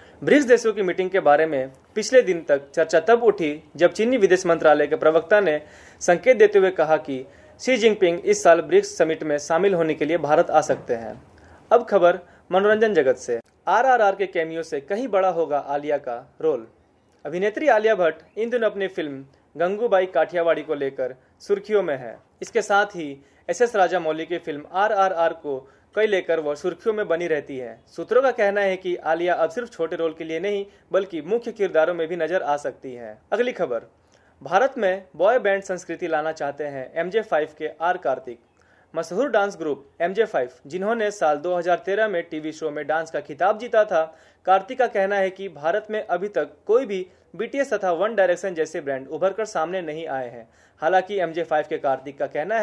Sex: male